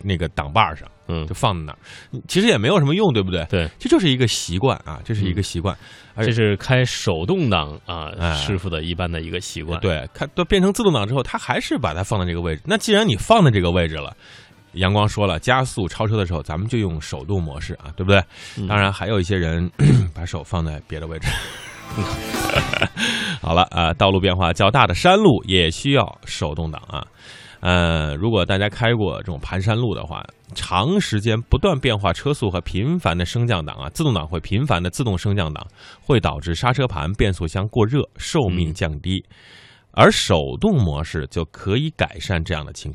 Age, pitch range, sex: 20-39, 85-125 Hz, male